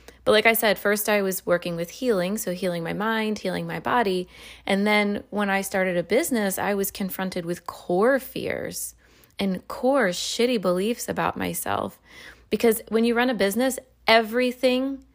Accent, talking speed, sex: American, 170 wpm, female